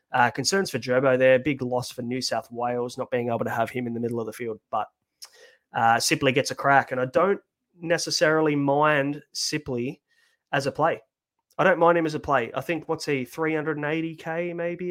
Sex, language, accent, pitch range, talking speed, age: male, English, Australian, 125-160 Hz, 205 wpm, 20-39